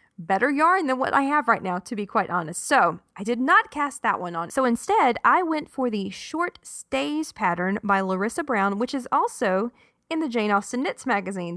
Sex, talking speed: female, 215 wpm